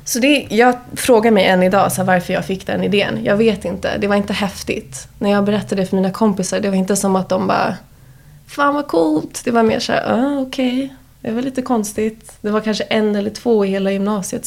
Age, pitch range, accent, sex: 20-39, 185-215 Hz, Swedish, female